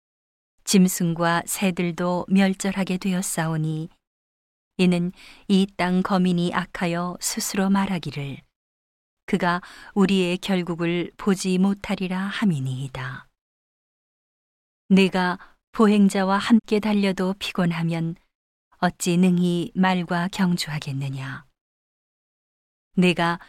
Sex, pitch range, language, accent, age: female, 170-195 Hz, Korean, native, 40-59